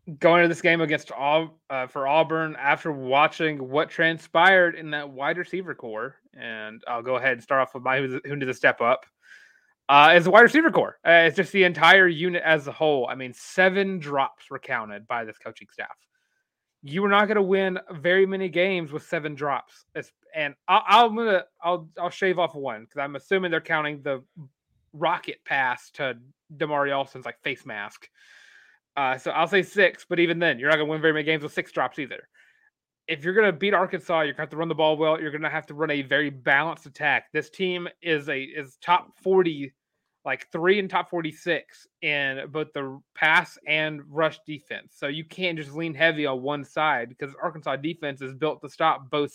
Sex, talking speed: male, 210 wpm